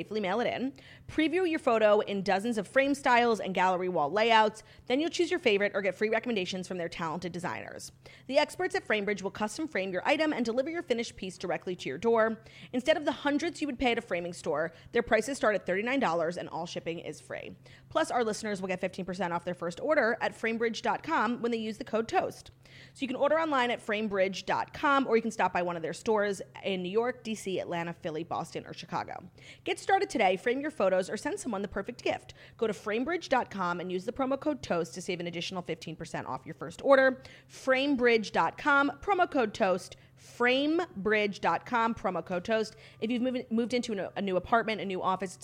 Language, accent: English, American